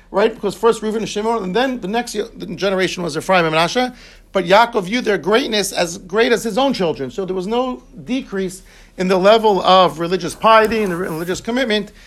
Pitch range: 175-210 Hz